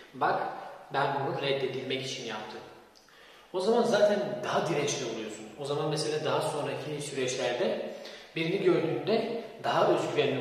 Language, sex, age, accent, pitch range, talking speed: Turkish, male, 40-59, native, 145-215 Hz, 125 wpm